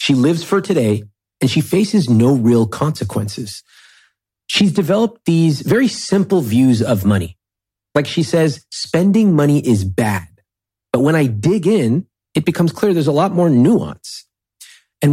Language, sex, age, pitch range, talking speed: English, male, 30-49, 100-155 Hz, 155 wpm